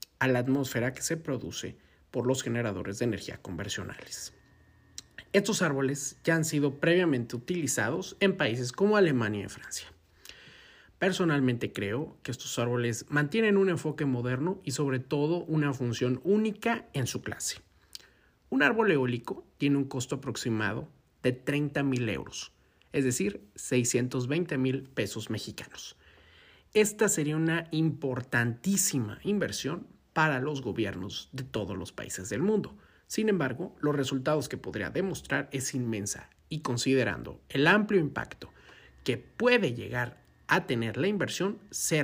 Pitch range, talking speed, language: 115-155 Hz, 135 wpm, Spanish